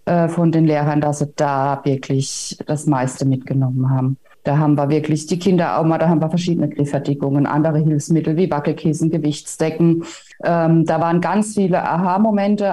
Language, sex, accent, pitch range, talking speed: German, female, German, 160-200 Hz, 165 wpm